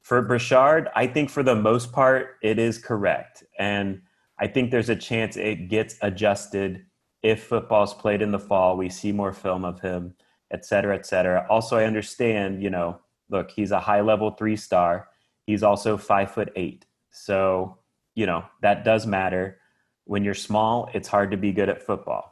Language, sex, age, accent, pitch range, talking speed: English, male, 30-49, American, 100-115 Hz, 190 wpm